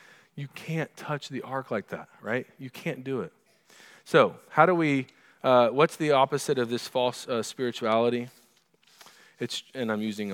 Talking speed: 170 wpm